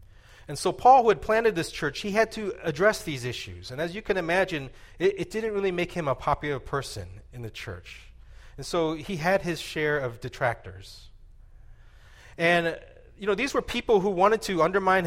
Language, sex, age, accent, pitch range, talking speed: English, male, 30-49, American, 120-185 Hz, 195 wpm